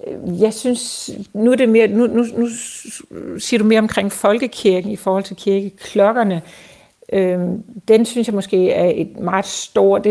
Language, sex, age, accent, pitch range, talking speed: Danish, female, 60-79, native, 180-210 Hz, 165 wpm